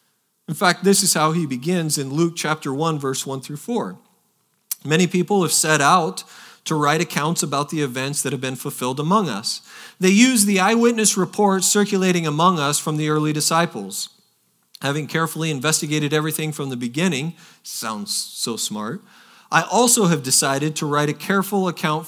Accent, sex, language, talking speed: American, male, English, 170 wpm